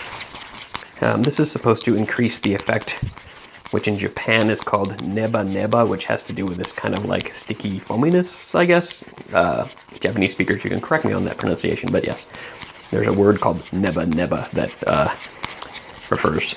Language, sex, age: English, male, 30-49